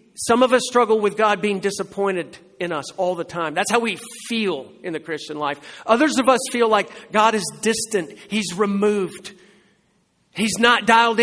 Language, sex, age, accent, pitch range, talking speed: English, male, 50-69, American, 165-215 Hz, 180 wpm